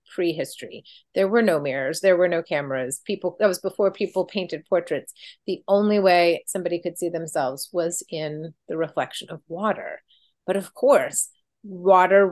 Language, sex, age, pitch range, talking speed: English, female, 30-49, 165-220 Hz, 160 wpm